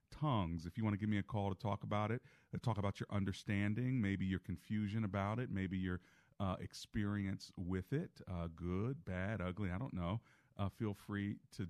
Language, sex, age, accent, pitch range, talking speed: English, male, 40-59, American, 95-115 Hz, 205 wpm